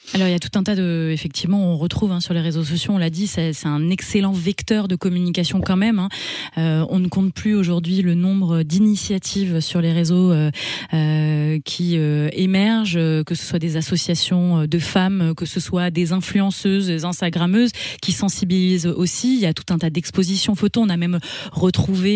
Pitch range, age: 165-195 Hz, 20-39